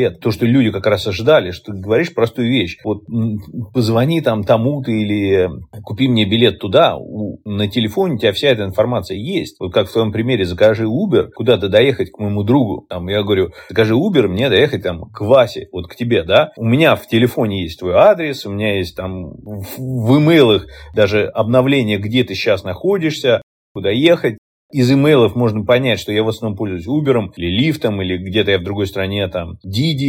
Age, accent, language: 30-49, native, Russian